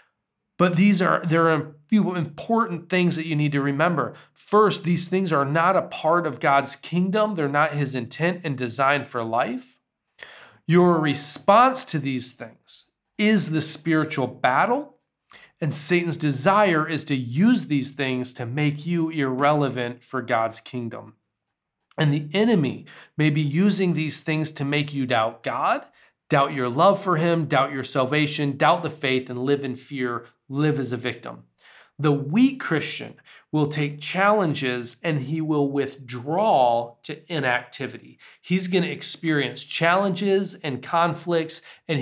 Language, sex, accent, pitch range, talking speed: Polish, male, American, 130-170 Hz, 155 wpm